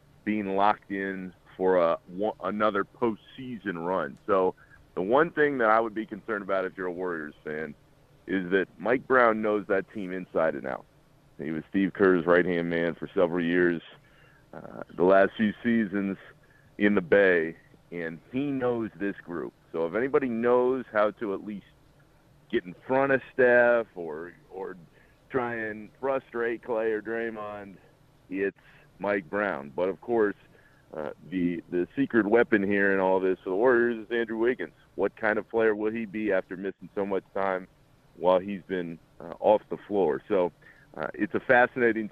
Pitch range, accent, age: 95-115 Hz, American, 40-59